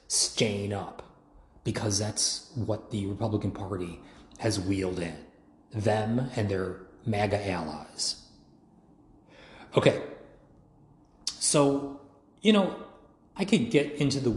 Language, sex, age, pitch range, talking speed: English, male, 30-49, 105-130 Hz, 105 wpm